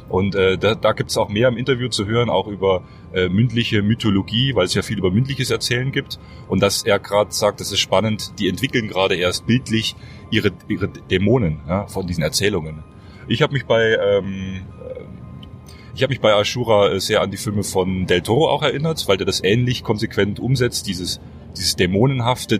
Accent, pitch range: German, 95-120 Hz